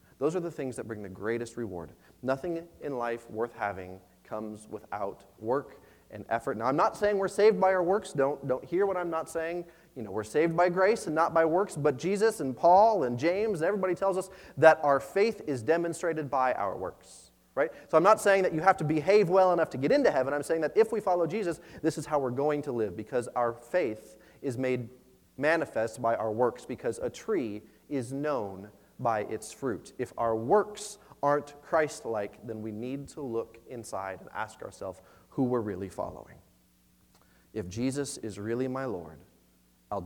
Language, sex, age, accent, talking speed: English, male, 30-49, American, 205 wpm